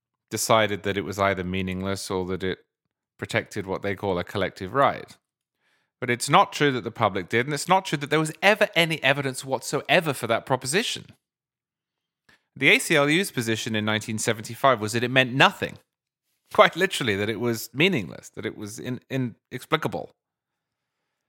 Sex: male